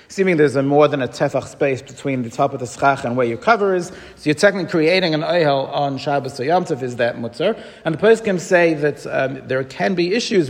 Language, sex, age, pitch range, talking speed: English, male, 40-59, 135-170 Hz, 240 wpm